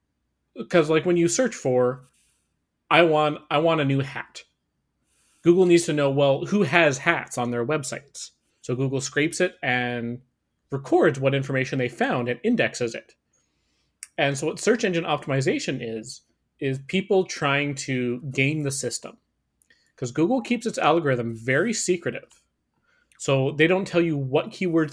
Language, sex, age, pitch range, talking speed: English, male, 30-49, 125-160 Hz, 155 wpm